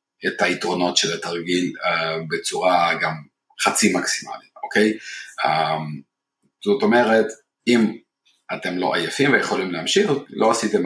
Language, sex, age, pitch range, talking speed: Hebrew, male, 40-59, 90-105 Hz, 115 wpm